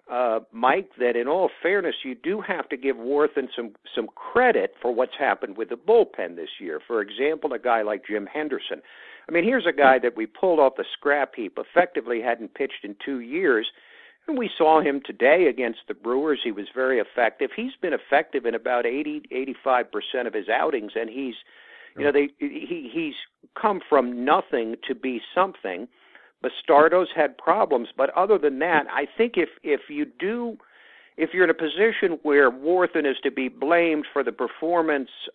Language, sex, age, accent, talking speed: English, male, 60-79, American, 190 wpm